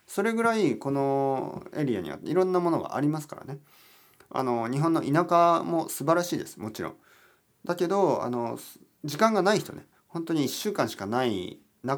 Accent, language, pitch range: native, Japanese, 100-165 Hz